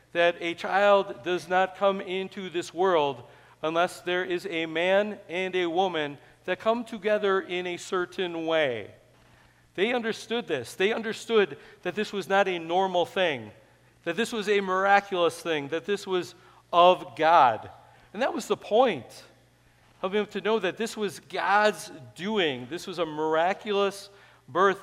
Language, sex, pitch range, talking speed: English, male, 170-215 Hz, 160 wpm